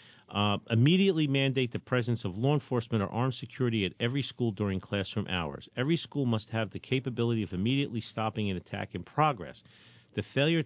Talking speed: 180 wpm